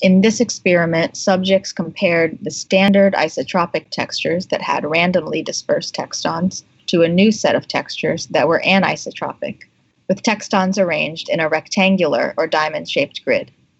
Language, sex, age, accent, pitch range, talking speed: English, female, 20-39, American, 160-195 Hz, 140 wpm